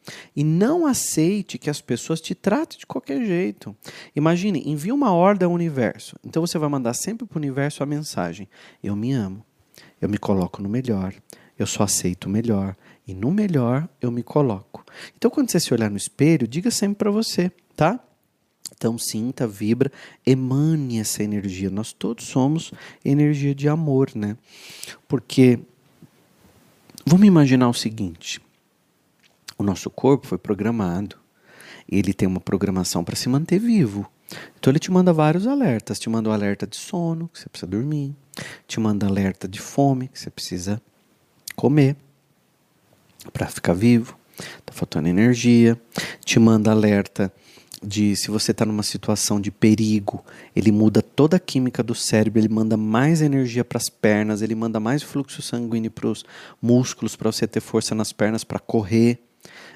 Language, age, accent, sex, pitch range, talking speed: Portuguese, 40-59, Brazilian, male, 105-150 Hz, 165 wpm